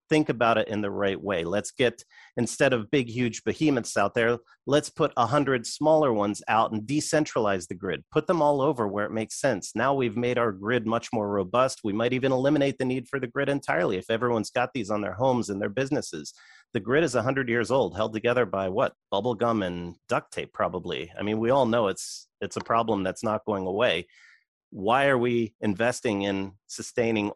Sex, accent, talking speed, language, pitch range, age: male, American, 215 wpm, English, 105-130 Hz, 40-59